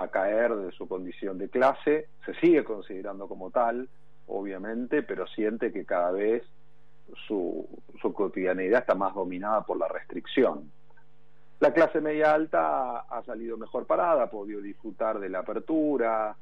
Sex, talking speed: male, 150 wpm